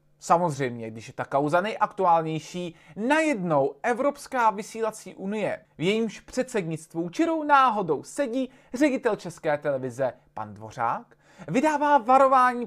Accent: native